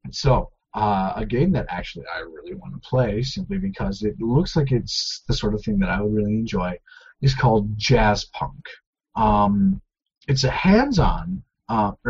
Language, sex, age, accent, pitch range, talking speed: English, male, 30-49, American, 110-175 Hz, 180 wpm